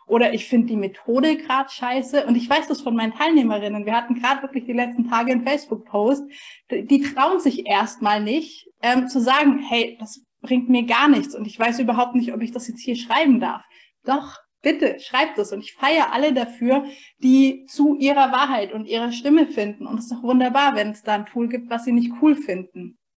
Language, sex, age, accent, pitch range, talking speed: German, female, 20-39, German, 230-280 Hz, 210 wpm